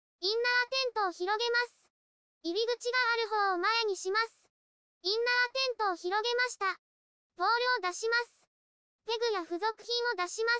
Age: 20-39